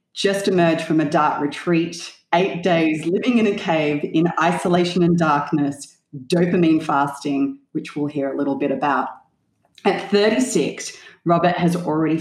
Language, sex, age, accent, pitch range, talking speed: English, female, 30-49, Australian, 150-180 Hz, 145 wpm